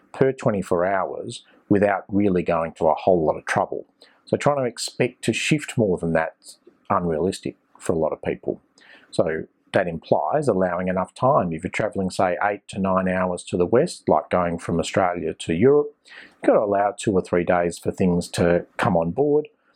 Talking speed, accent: 195 wpm, Australian